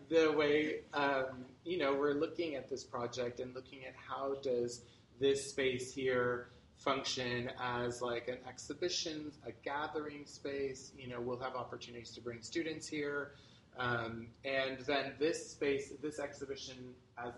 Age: 30-49